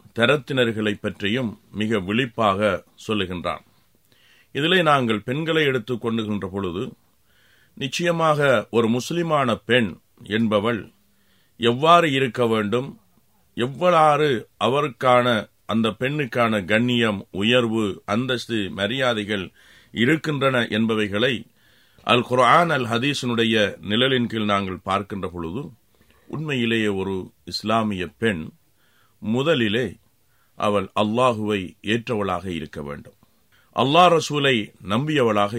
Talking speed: 85 wpm